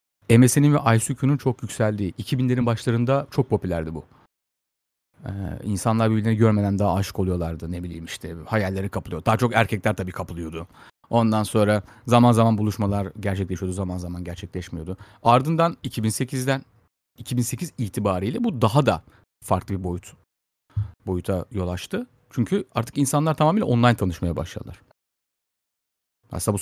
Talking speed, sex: 130 wpm, male